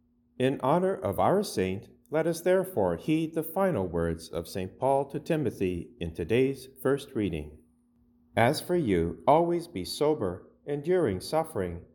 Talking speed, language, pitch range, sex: 145 wpm, English, 95-155 Hz, male